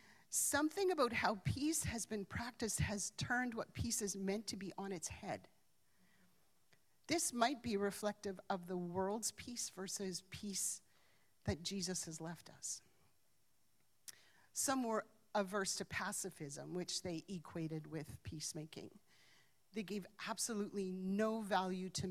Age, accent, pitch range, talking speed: 40-59, American, 175-210 Hz, 135 wpm